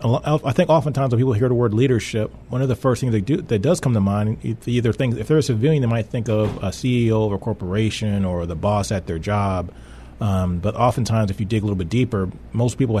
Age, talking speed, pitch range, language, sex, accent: 30-49, 250 wpm, 95-110 Hz, English, male, American